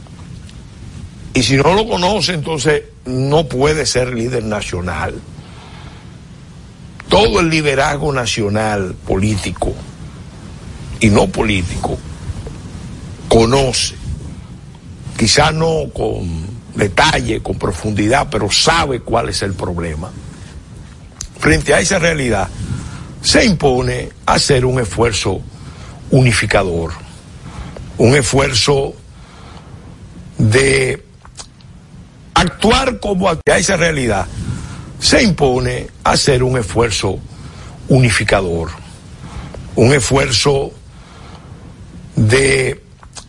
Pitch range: 105-145 Hz